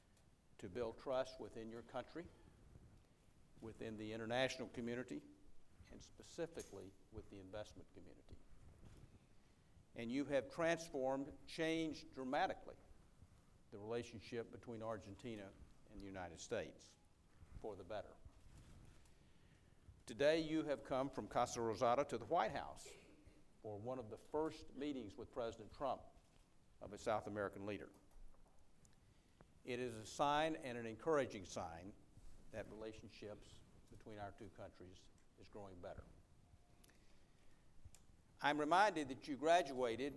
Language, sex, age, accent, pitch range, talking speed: English, male, 50-69, American, 105-135 Hz, 120 wpm